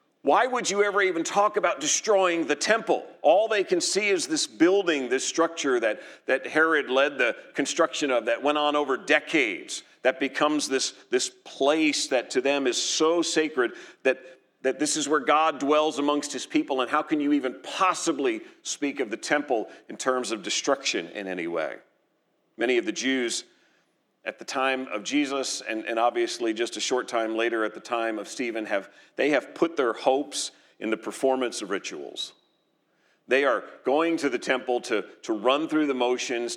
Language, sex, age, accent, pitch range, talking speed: English, male, 40-59, American, 125-185 Hz, 185 wpm